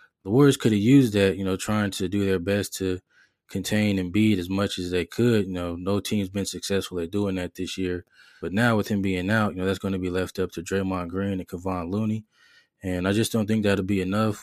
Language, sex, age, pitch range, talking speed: English, male, 20-39, 95-110 Hz, 250 wpm